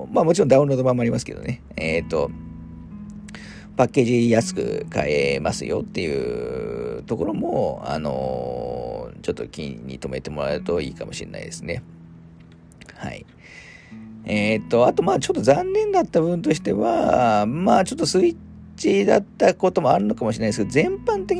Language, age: Japanese, 40-59